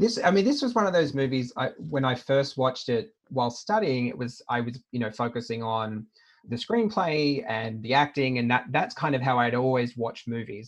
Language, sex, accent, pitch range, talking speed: English, male, Australian, 115-135 Hz, 225 wpm